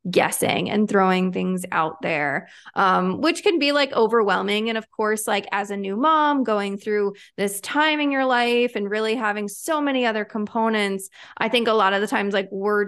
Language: English